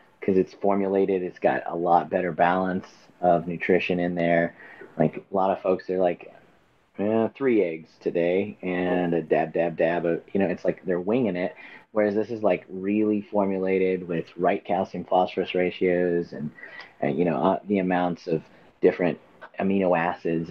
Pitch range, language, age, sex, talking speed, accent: 85-100 Hz, English, 30-49, male, 165 wpm, American